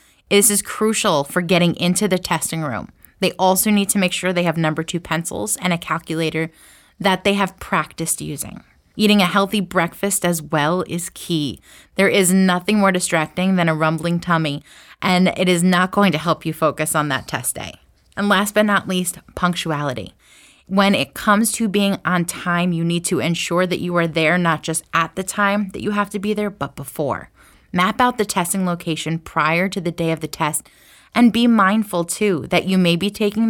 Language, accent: English, American